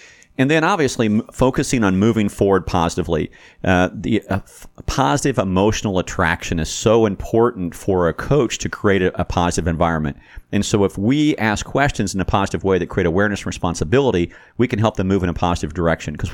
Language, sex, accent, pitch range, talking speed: English, male, American, 85-115 Hz, 190 wpm